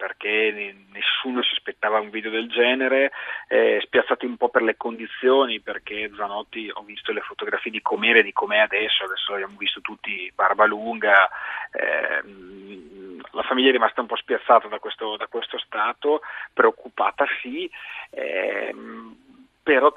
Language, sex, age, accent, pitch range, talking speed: Italian, male, 30-49, native, 110-185 Hz, 150 wpm